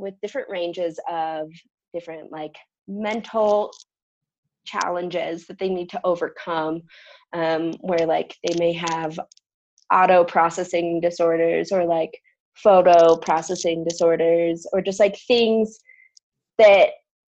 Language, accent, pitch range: English, American, 170-235 Hz